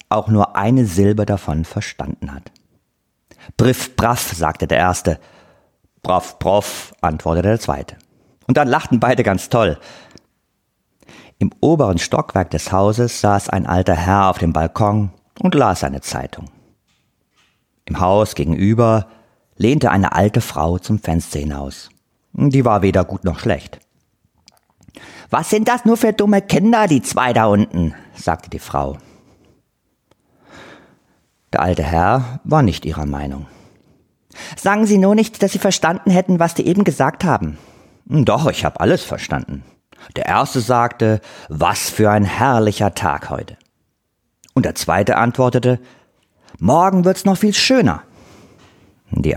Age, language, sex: 50-69, German, male